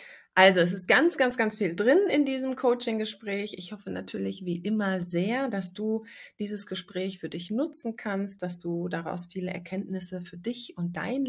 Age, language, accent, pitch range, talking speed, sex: 30-49, German, German, 175-245 Hz, 180 wpm, female